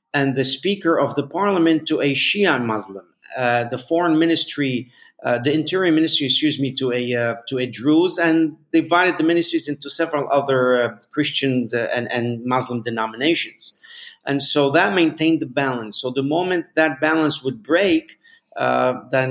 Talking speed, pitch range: 170 wpm, 120-155 Hz